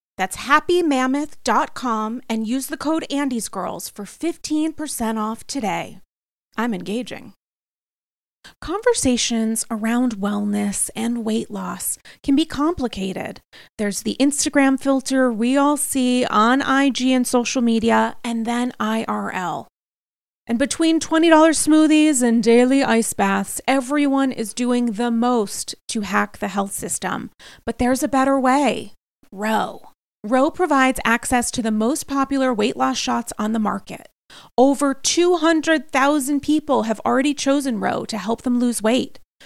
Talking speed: 130 wpm